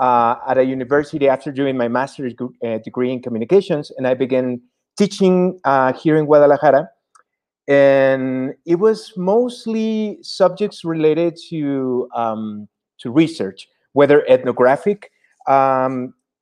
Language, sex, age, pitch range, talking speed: English, male, 30-49, 120-160 Hz, 125 wpm